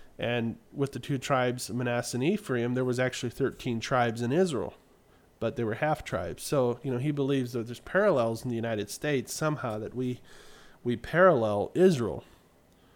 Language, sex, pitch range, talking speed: English, male, 115-150 Hz, 175 wpm